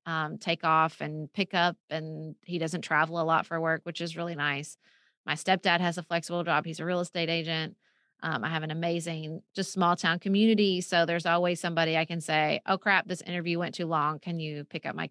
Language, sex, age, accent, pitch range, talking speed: English, female, 30-49, American, 160-185 Hz, 225 wpm